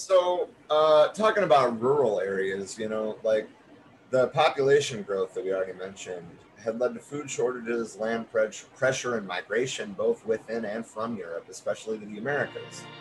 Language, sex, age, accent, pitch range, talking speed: English, male, 30-49, American, 85-130 Hz, 160 wpm